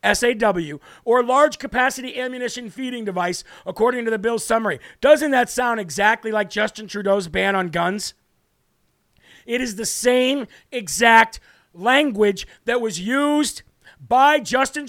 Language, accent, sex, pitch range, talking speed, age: English, American, male, 210-250 Hz, 135 wpm, 40-59